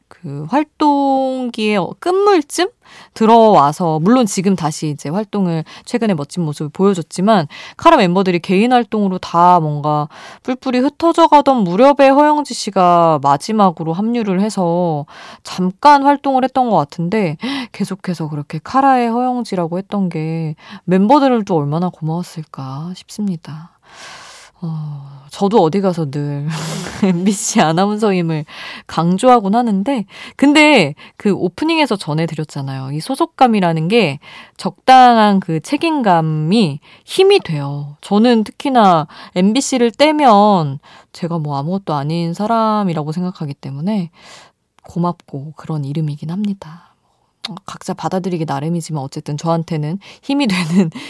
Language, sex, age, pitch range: Korean, female, 20-39, 160-230 Hz